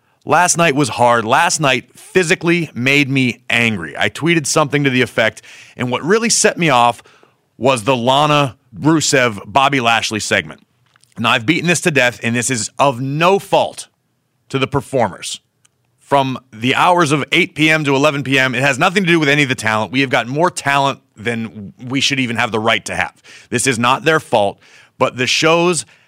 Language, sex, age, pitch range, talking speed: English, male, 30-49, 120-160 Hz, 195 wpm